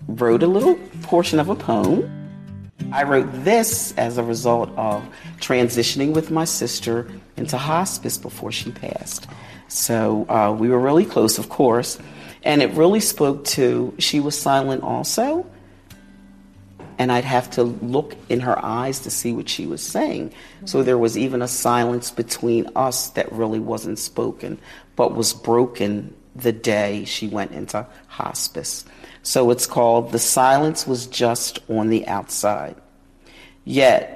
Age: 40-59